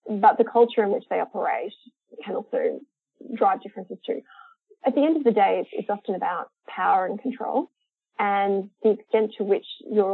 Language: English